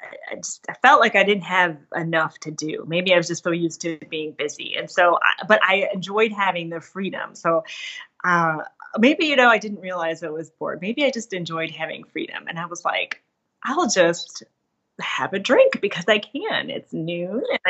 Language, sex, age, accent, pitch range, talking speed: English, female, 30-49, American, 175-250 Hz, 205 wpm